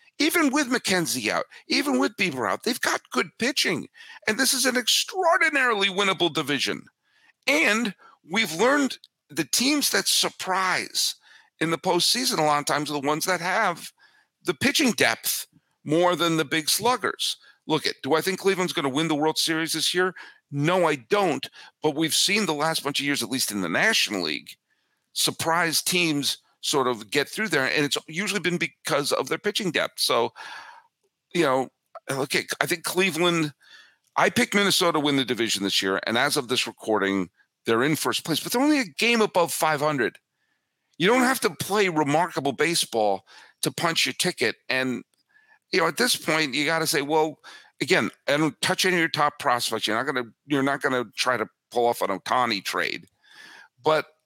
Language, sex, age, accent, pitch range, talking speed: English, male, 50-69, American, 145-210 Hz, 190 wpm